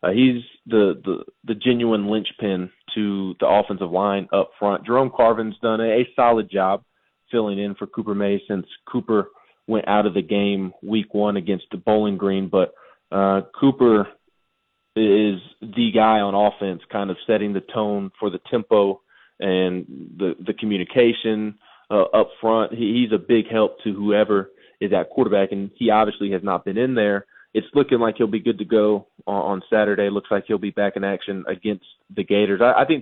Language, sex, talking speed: English, male, 185 wpm